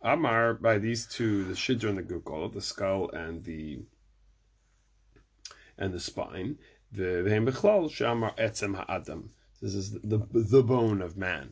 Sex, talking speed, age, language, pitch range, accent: male, 145 wpm, 30-49, English, 95-115 Hz, American